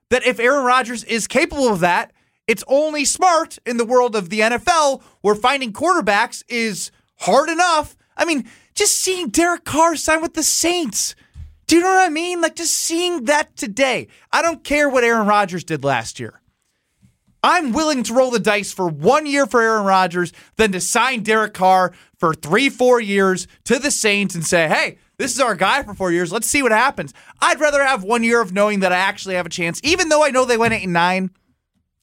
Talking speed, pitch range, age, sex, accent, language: 210 wpm, 185-270 Hz, 20-39, male, American, English